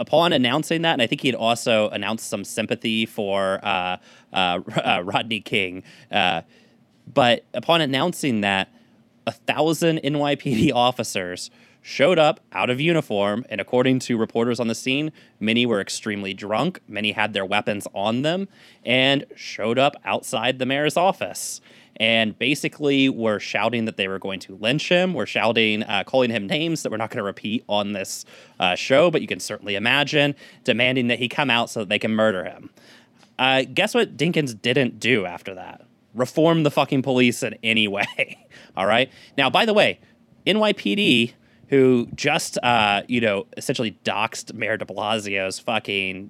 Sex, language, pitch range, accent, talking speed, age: male, English, 105-140 Hz, American, 170 wpm, 20-39